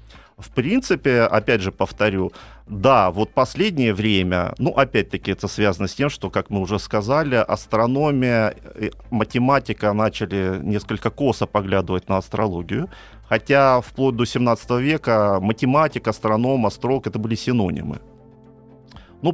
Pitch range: 95-130 Hz